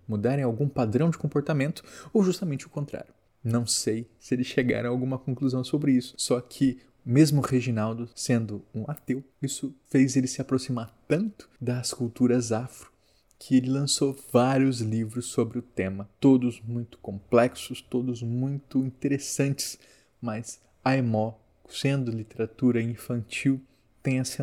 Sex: male